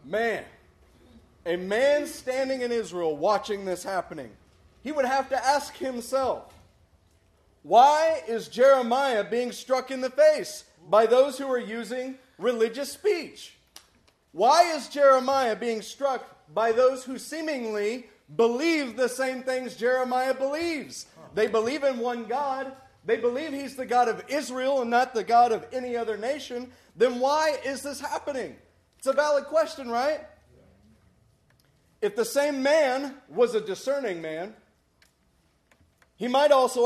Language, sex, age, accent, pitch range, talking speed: English, male, 40-59, American, 230-285 Hz, 140 wpm